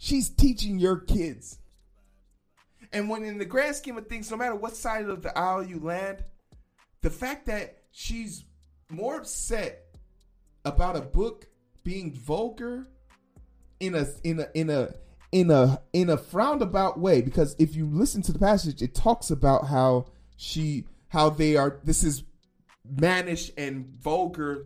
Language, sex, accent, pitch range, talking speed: English, male, American, 125-190 Hz, 160 wpm